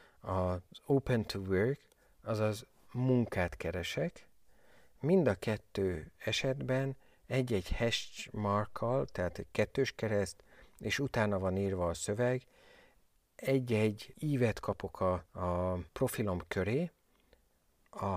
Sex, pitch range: male, 90-115 Hz